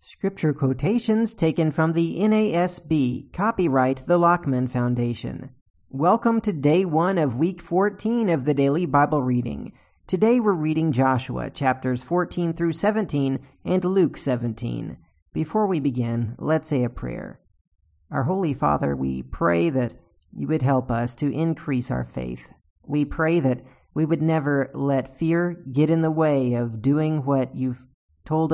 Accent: American